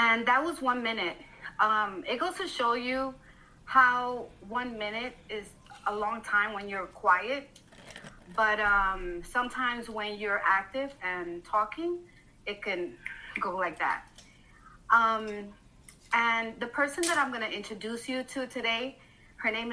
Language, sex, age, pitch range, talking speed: English, female, 30-49, 210-270 Hz, 145 wpm